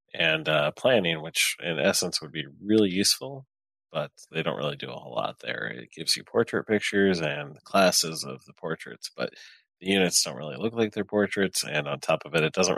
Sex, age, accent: male, 30-49, American